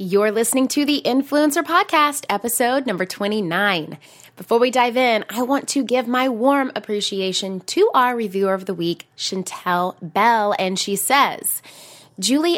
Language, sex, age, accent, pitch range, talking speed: English, female, 20-39, American, 195-280 Hz, 155 wpm